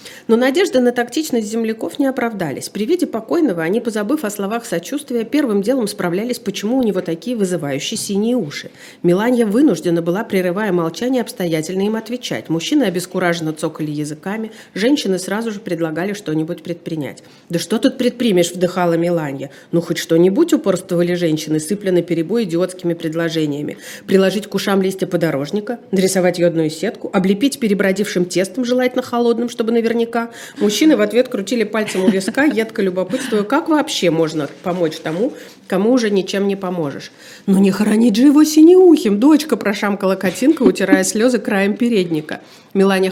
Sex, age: female, 40-59